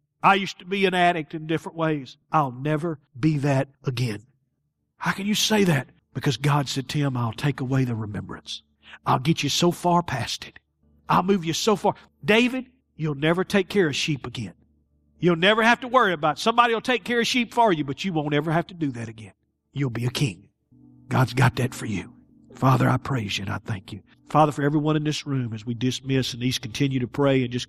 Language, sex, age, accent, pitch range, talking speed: English, male, 50-69, American, 135-195 Hz, 230 wpm